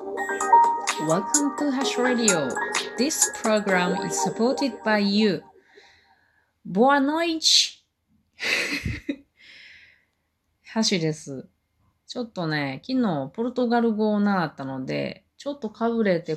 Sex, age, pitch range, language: female, 30-49, 150-240 Hz, Japanese